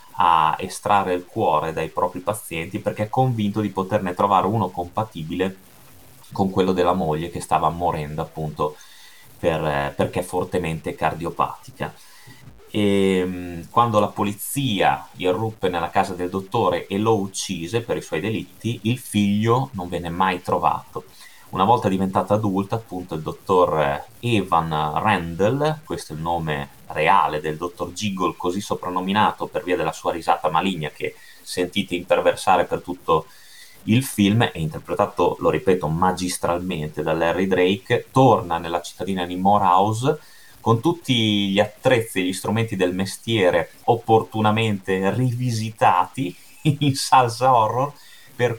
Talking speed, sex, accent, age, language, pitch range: 135 wpm, male, native, 30-49, Italian, 90-115 Hz